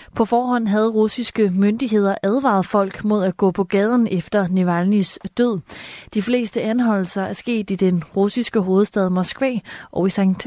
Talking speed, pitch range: 160 wpm, 190-230 Hz